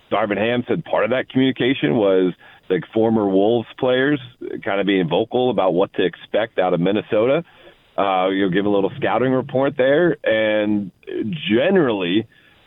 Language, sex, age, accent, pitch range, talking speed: English, male, 30-49, American, 110-130 Hz, 155 wpm